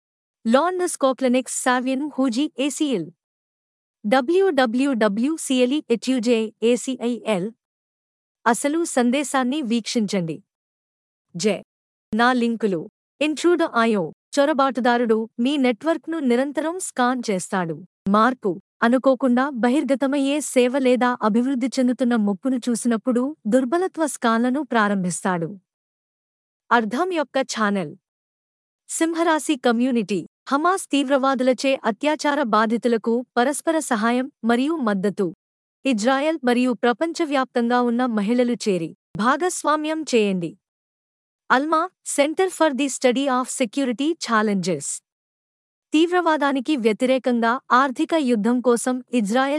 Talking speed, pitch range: 80 wpm, 225-280 Hz